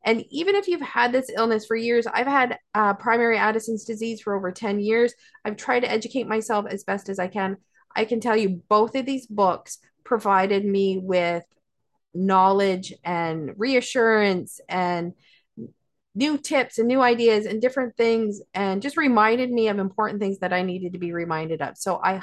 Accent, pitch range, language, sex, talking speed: American, 195-235 Hz, English, female, 185 wpm